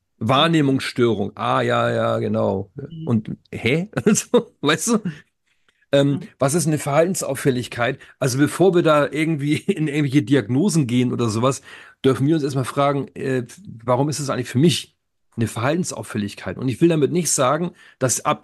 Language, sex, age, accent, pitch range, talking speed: German, male, 40-59, German, 120-145 Hz, 155 wpm